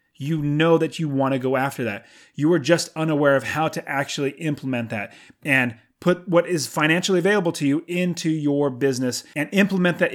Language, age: English, 30-49